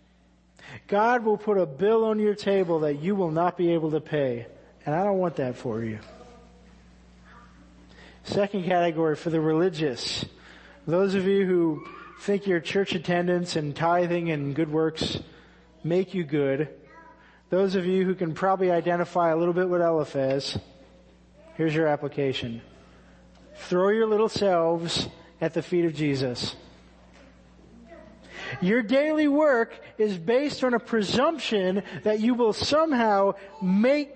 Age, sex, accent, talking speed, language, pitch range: 40-59, male, American, 140 wpm, English, 140-200 Hz